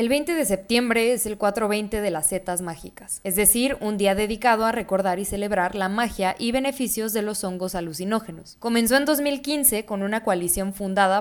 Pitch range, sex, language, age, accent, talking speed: 185-235 Hz, female, Spanish, 20-39, Mexican, 185 wpm